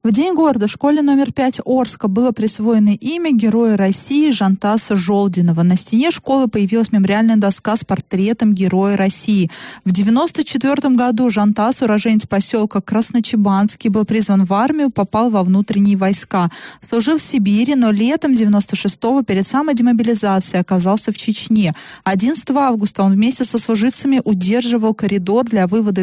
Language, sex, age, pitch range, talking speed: Russian, female, 20-39, 195-240 Hz, 145 wpm